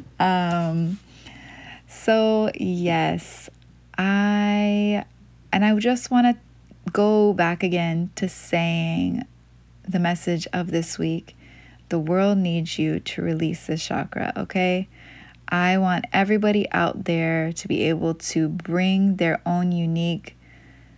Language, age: English, 20-39